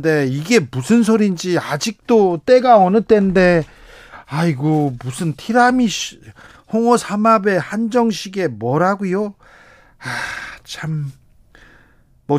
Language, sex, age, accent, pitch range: Korean, male, 40-59, native, 145-205 Hz